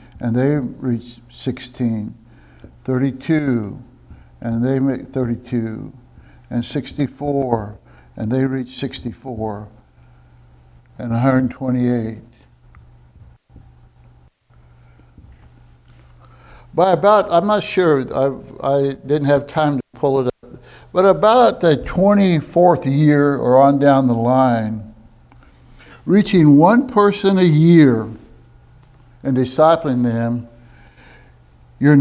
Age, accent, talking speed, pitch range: 60-79, American, 95 wpm, 110-150 Hz